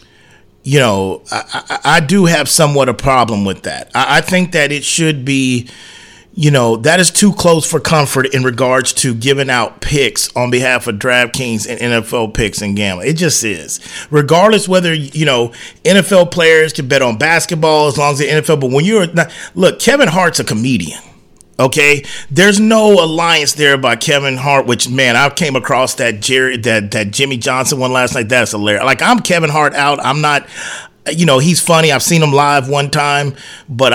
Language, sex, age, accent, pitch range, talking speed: English, male, 40-59, American, 120-155 Hz, 195 wpm